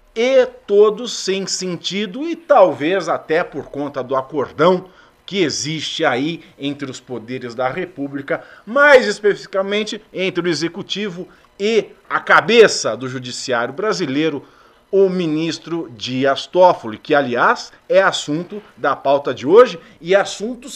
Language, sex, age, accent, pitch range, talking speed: Portuguese, male, 50-69, Brazilian, 130-185 Hz, 130 wpm